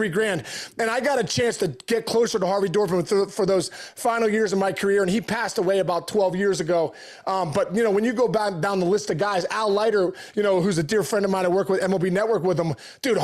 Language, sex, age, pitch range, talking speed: English, male, 20-39, 190-225 Hz, 265 wpm